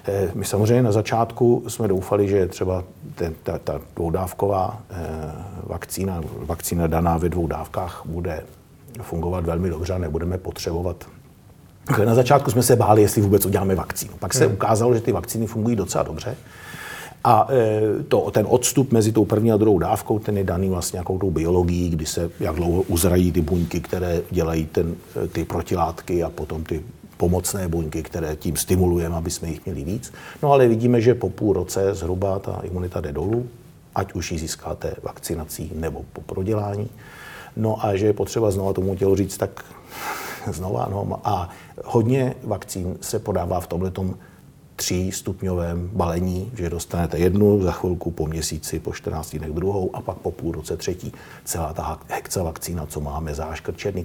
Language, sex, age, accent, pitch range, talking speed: Czech, male, 50-69, native, 85-105 Hz, 170 wpm